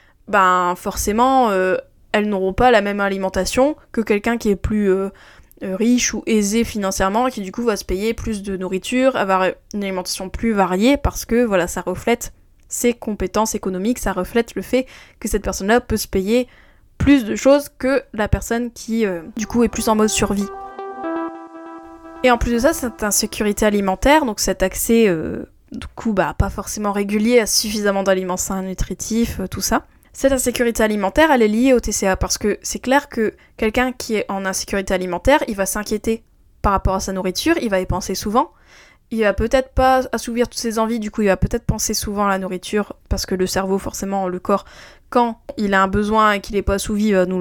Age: 10-29